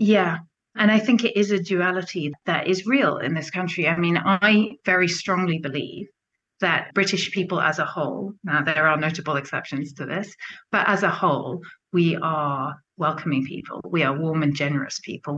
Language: English